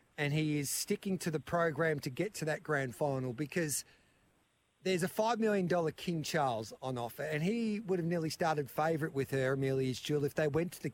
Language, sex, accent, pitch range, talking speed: English, male, Australian, 145-170 Hz, 210 wpm